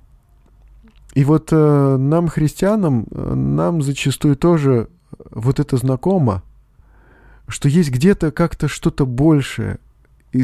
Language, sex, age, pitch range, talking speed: Russian, male, 20-39, 125-155 Hz, 100 wpm